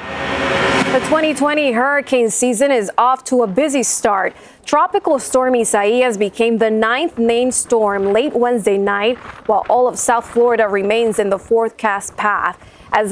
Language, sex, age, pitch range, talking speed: English, female, 20-39, 210-260 Hz, 145 wpm